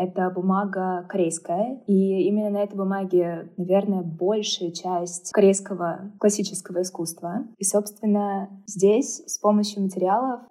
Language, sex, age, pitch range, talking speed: Russian, female, 20-39, 180-205 Hz, 115 wpm